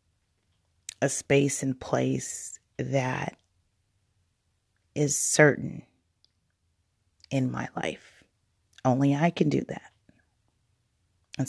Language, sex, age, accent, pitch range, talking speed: English, female, 30-49, American, 130-160 Hz, 85 wpm